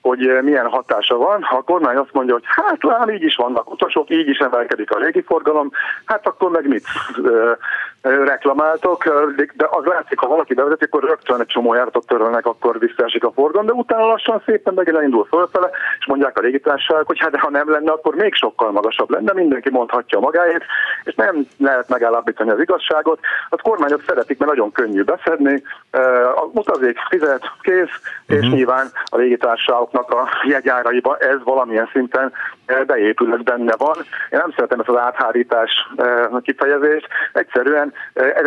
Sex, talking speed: male, 165 wpm